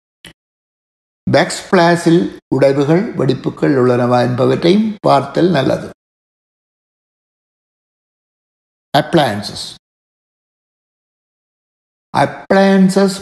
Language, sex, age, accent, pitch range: Tamil, male, 60-79, native, 130-170 Hz